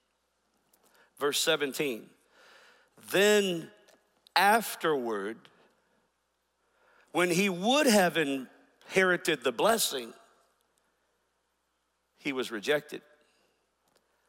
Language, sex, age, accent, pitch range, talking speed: English, male, 50-69, American, 155-250 Hz, 60 wpm